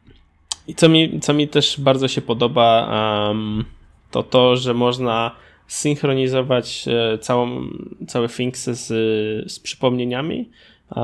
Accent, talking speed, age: native, 105 wpm, 20-39